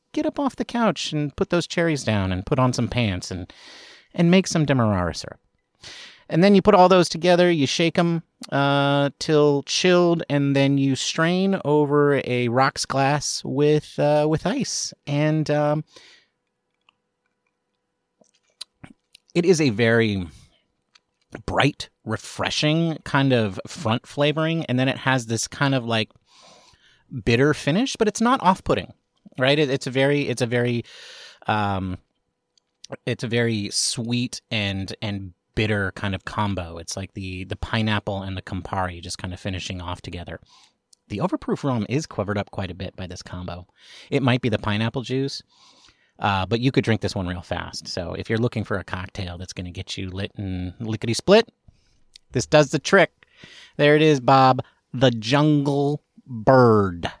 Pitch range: 100-150 Hz